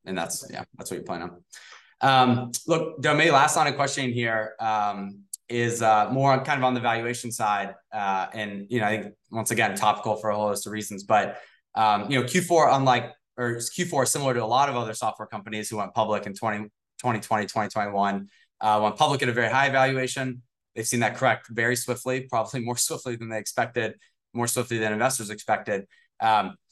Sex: male